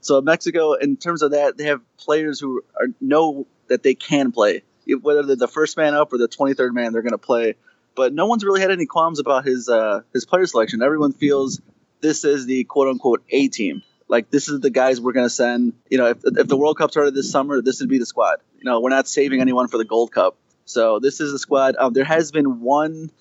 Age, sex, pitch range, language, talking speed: 30-49, male, 130-165 Hz, English, 250 wpm